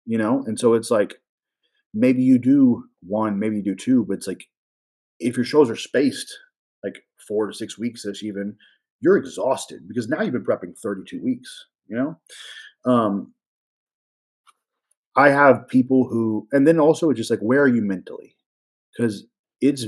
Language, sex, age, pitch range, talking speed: English, male, 30-49, 105-165 Hz, 170 wpm